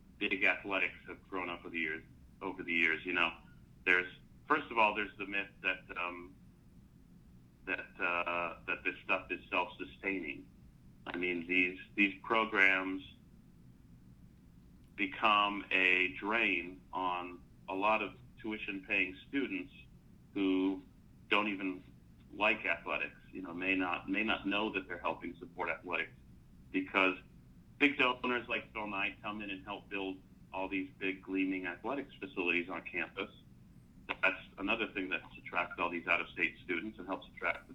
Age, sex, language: 30-49, male, English